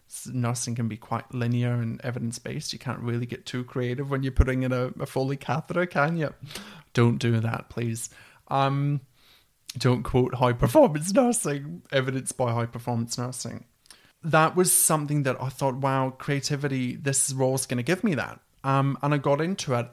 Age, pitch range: 30-49, 120-145 Hz